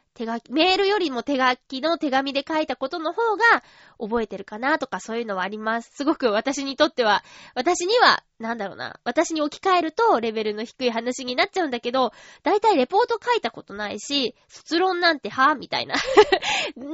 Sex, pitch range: female, 225-335 Hz